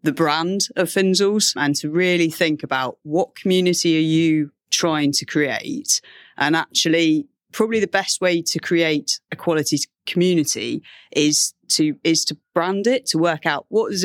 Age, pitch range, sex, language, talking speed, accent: 30-49, 150-180 Hz, female, English, 160 wpm, British